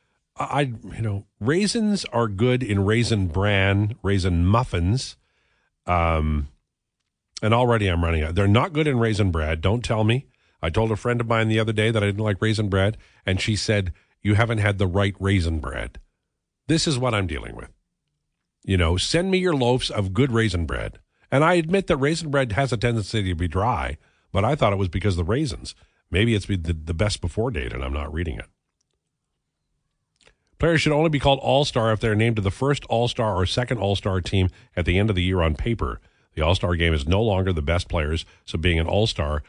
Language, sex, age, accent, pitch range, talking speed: English, male, 50-69, American, 90-125 Hz, 210 wpm